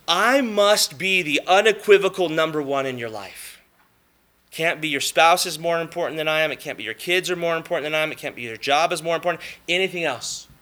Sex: male